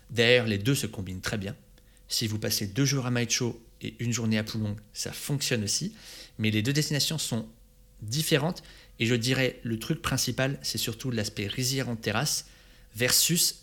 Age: 30-49